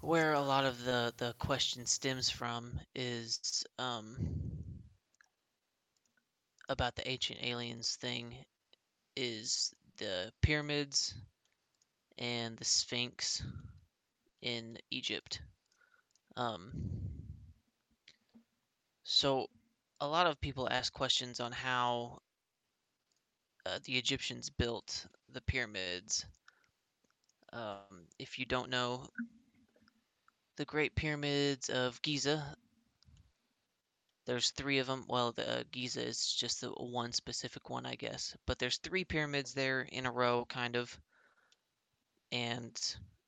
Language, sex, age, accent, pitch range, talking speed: English, male, 20-39, American, 120-135 Hz, 105 wpm